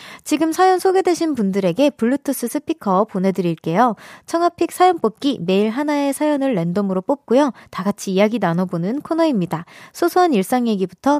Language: Korean